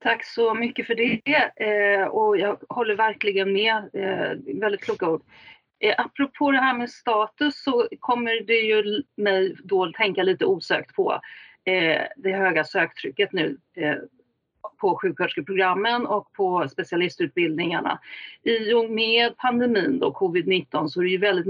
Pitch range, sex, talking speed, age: 195-280 Hz, female, 150 wpm, 40-59